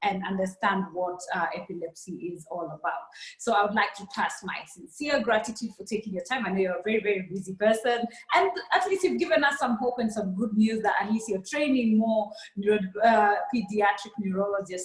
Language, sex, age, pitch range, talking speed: English, female, 20-39, 205-245 Hz, 200 wpm